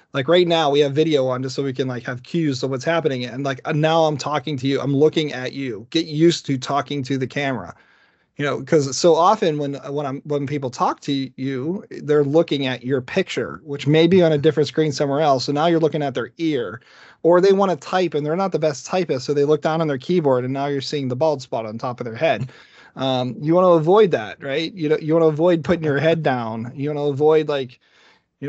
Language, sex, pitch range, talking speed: English, male, 135-160 Hz, 255 wpm